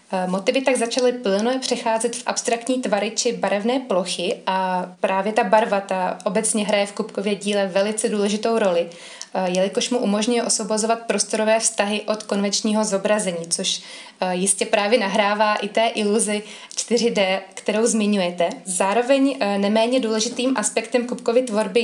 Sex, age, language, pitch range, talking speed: female, 20-39, Slovak, 200-235 Hz, 135 wpm